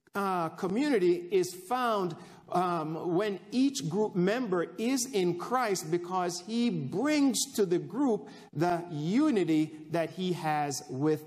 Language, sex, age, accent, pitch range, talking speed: English, male, 50-69, American, 160-205 Hz, 130 wpm